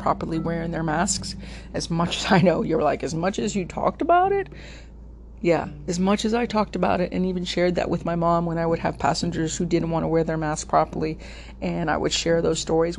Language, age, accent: English, 40-59, American